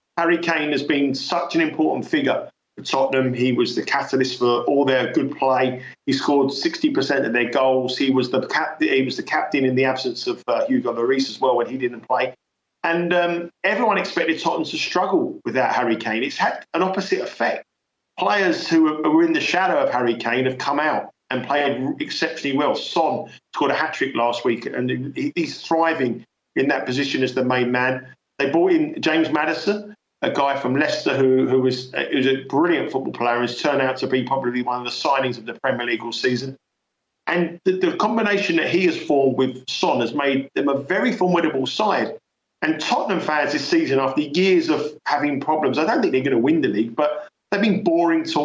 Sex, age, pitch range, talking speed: male, 50-69, 130-165 Hz, 205 wpm